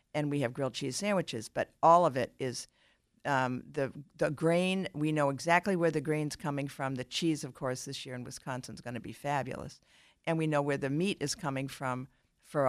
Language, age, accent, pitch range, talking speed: English, 50-69, American, 130-155 Hz, 220 wpm